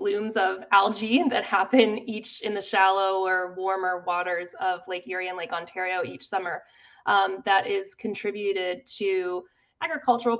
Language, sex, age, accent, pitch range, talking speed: English, female, 20-39, American, 185-250 Hz, 150 wpm